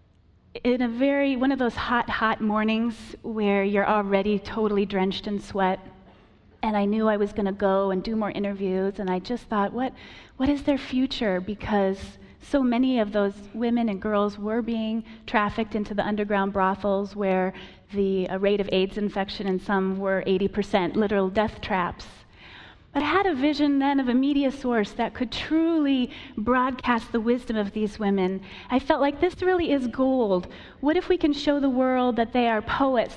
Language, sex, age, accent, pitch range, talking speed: English, female, 30-49, American, 195-250 Hz, 185 wpm